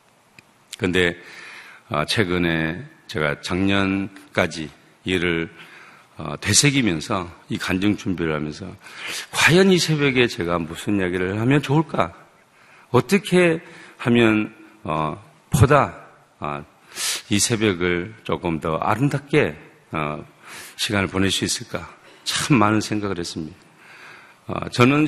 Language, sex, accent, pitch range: Korean, male, native, 85-120 Hz